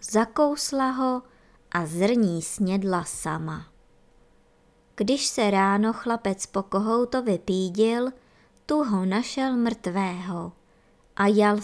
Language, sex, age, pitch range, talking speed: Czech, male, 20-39, 185-255 Hz, 100 wpm